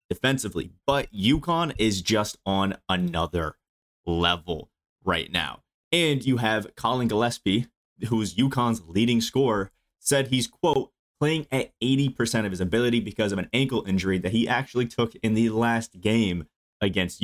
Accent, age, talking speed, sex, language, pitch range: American, 30-49, 145 wpm, male, English, 95-130 Hz